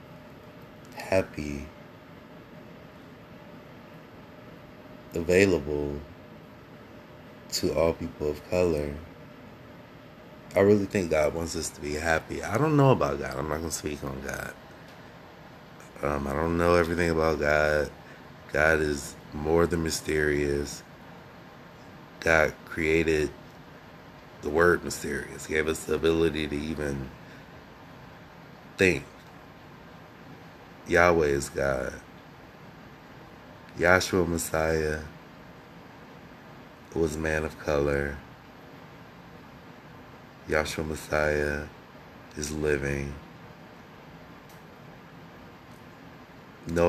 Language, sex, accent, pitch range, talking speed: English, male, American, 75-80 Hz, 85 wpm